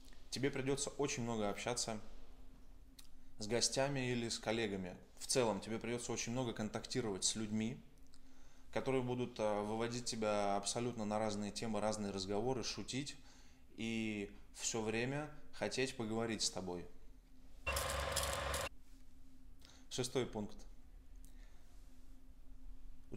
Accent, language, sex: native, Russian, male